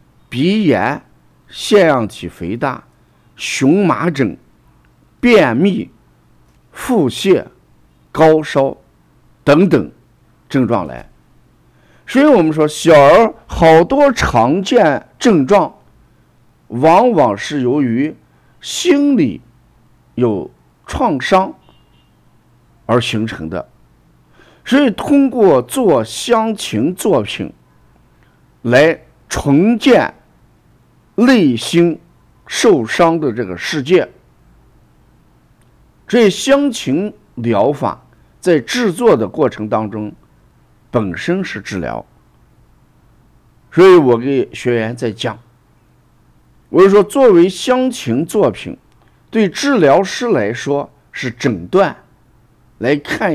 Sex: male